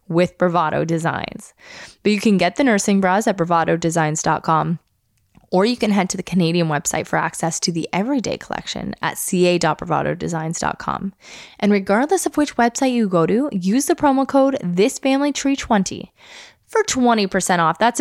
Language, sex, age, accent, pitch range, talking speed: English, female, 20-39, American, 180-260 Hz, 150 wpm